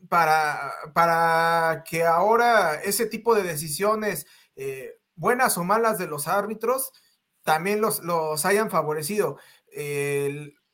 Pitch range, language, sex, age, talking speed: 155-220 Hz, Spanish, male, 30-49, 115 wpm